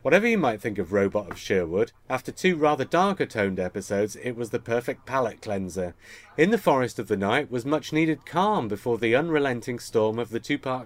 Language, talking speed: English, 195 wpm